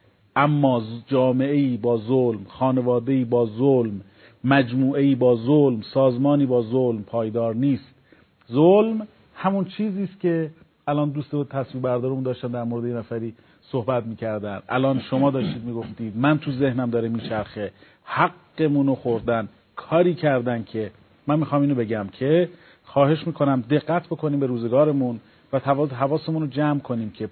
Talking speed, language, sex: 145 wpm, Persian, male